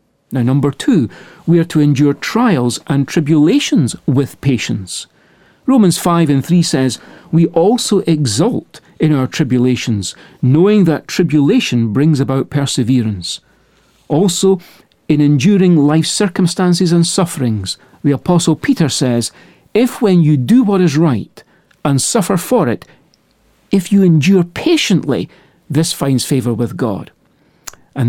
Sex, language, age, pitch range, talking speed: male, English, 50-69, 135-185 Hz, 130 wpm